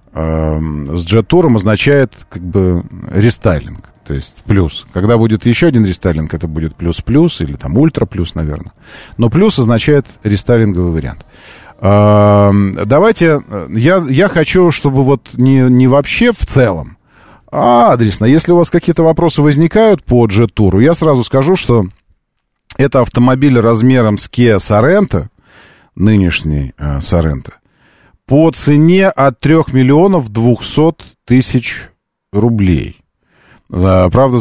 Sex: male